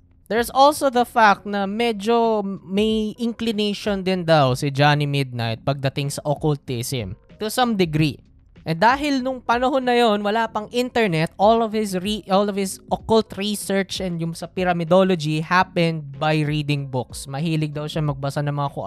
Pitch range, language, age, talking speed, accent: 135-185 Hz, Filipino, 20-39, 165 wpm, native